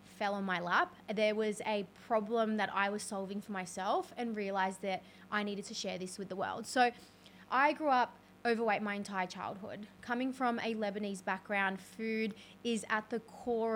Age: 20-39